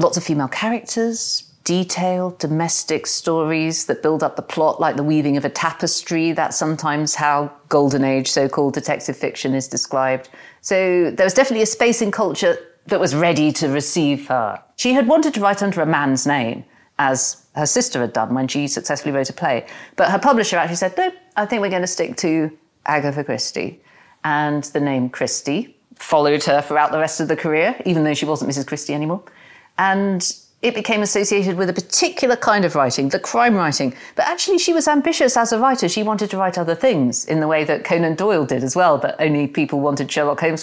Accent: British